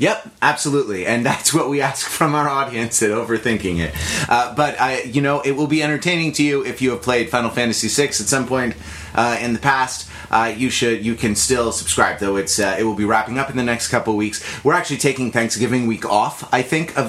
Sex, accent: male, American